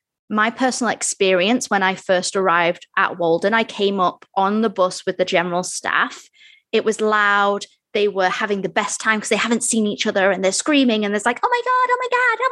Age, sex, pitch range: 20-39, female, 205-275 Hz